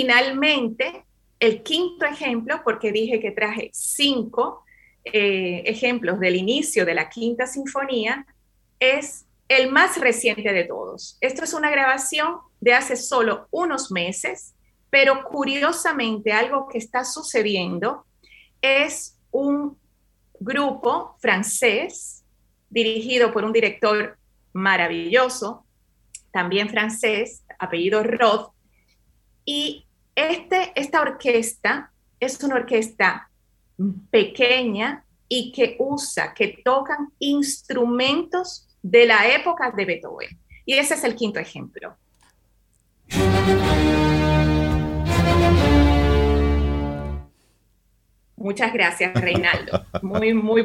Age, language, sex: 30-49, Spanish, female